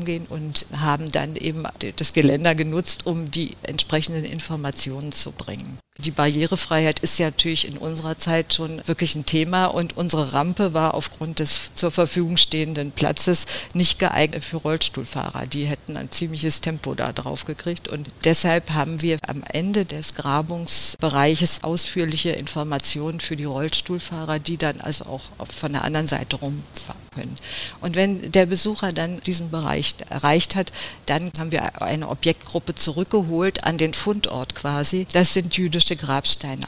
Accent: German